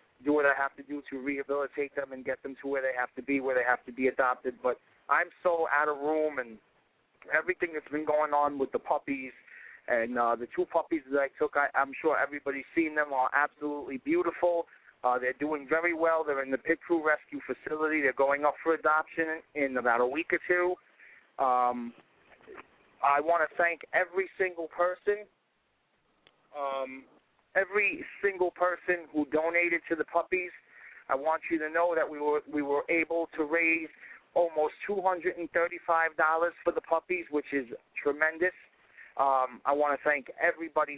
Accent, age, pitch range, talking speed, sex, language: American, 30-49, 140-170 Hz, 180 wpm, male, English